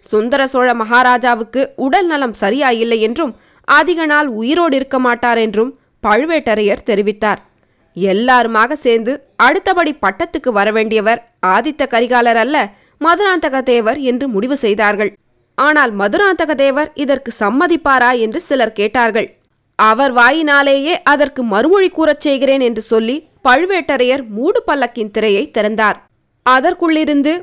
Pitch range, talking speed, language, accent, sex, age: 220-280 Hz, 110 wpm, Tamil, native, female, 20-39